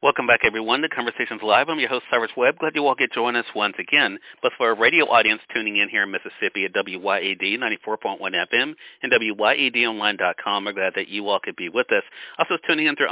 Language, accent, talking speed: English, American, 220 wpm